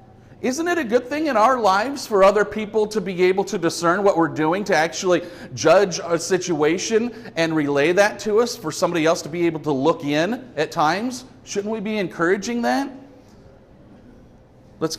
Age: 40-59